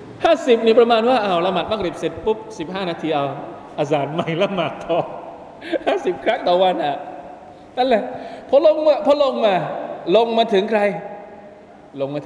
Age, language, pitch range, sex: 20-39, Thai, 160-235 Hz, male